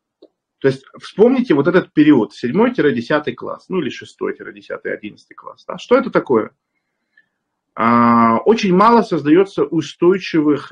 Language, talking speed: Russian, 110 wpm